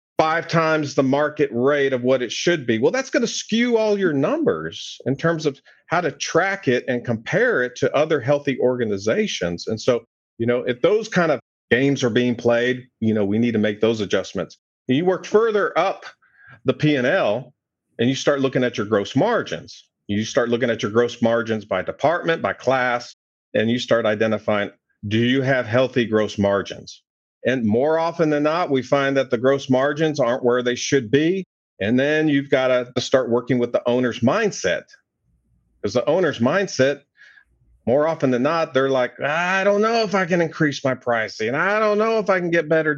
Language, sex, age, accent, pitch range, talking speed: English, male, 40-59, American, 120-160 Hz, 195 wpm